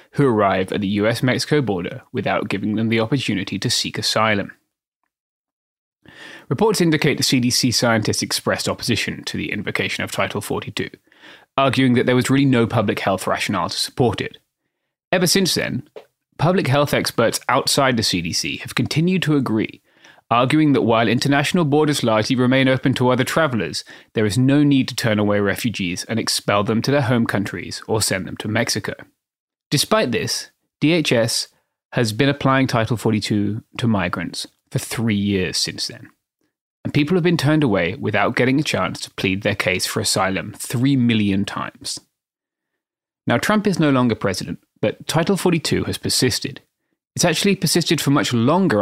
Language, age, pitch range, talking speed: English, 20-39, 110-145 Hz, 165 wpm